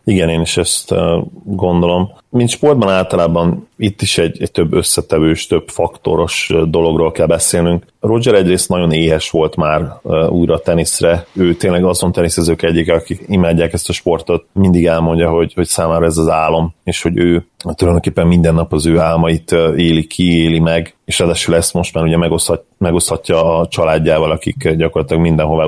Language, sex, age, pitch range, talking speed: Hungarian, male, 30-49, 80-90 Hz, 165 wpm